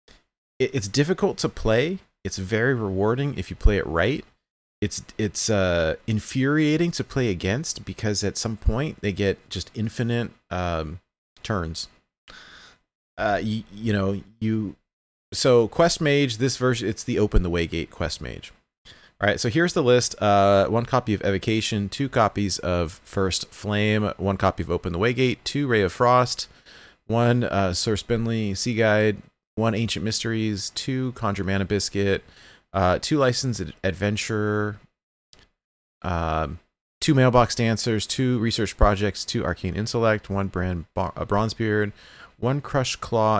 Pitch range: 95-120 Hz